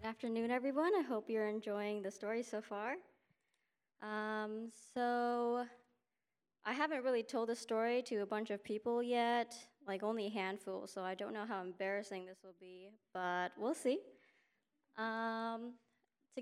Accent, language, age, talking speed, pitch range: American, English, 20-39, 155 wpm, 200-235 Hz